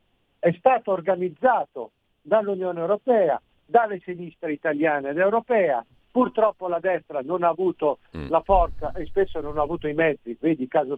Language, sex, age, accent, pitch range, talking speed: Italian, male, 50-69, native, 150-195 Hz, 150 wpm